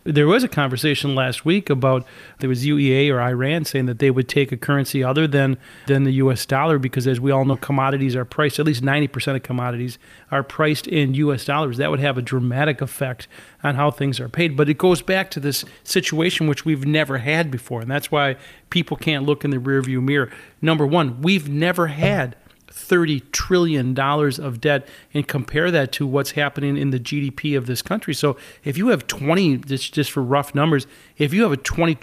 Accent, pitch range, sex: American, 135-160 Hz, male